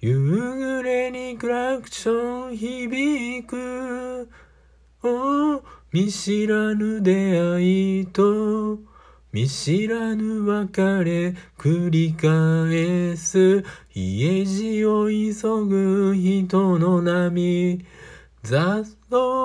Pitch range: 170-250 Hz